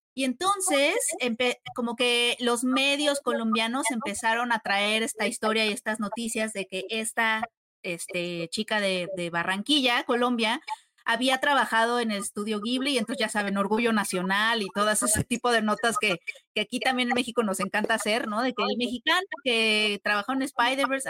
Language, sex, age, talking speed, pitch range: Spanish, female, 30-49, 170 wpm, 210-250 Hz